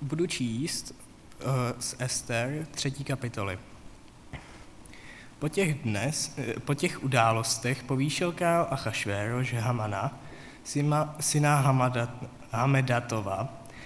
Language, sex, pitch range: Czech, male, 120-150 Hz